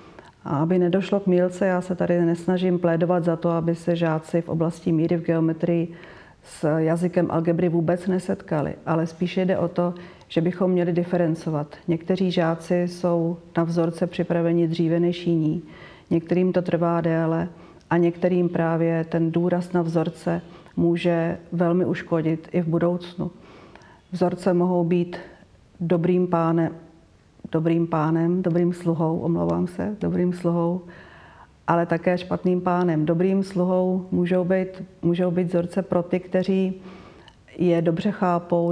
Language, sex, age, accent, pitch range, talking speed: Czech, female, 40-59, native, 170-180 Hz, 140 wpm